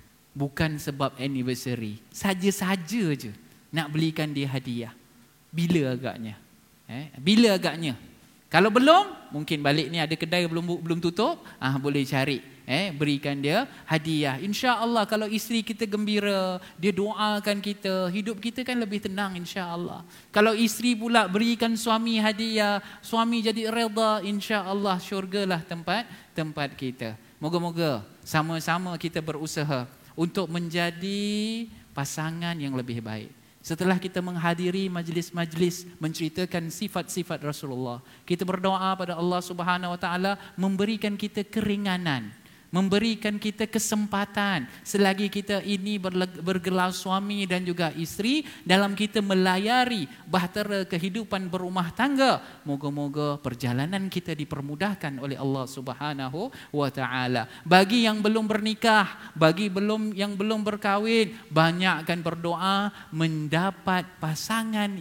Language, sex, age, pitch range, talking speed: Malay, male, 20-39, 145-205 Hz, 115 wpm